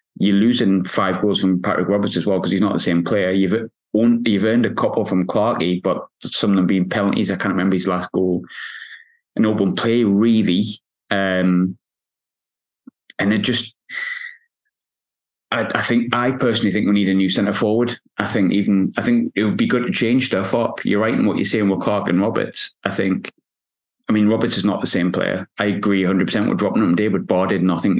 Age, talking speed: 20-39, 210 wpm